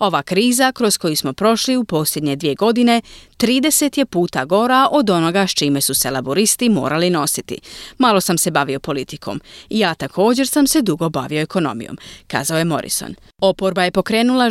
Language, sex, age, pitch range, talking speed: Croatian, female, 30-49, 150-215 Hz, 170 wpm